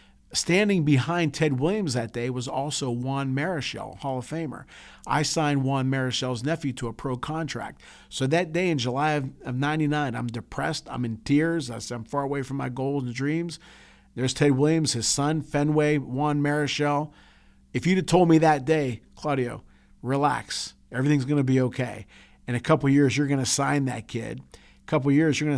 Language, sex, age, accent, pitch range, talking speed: English, male, 40-59, American, 120-150 Hz, 185 wpm